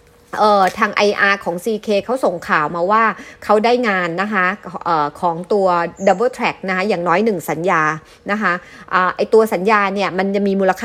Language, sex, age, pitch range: Thai, female, 30-49, 180-220 Hz